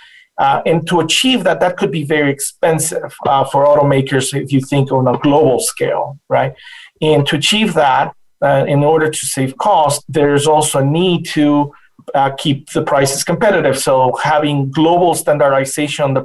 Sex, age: male, 40-59